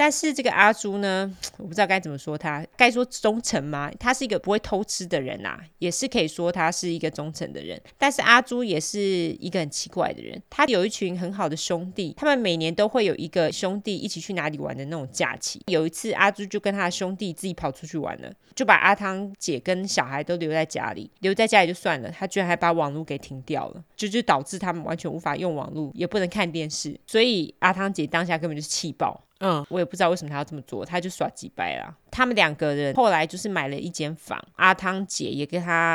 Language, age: Chinese, 20-39